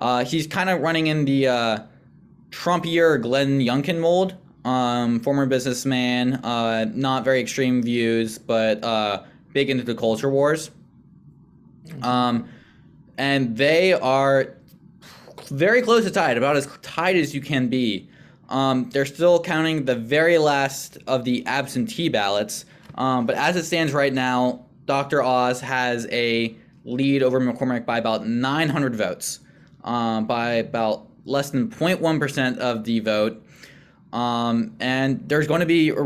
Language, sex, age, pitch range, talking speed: English, male, 20-39, 125-145 Hz, 145 wpm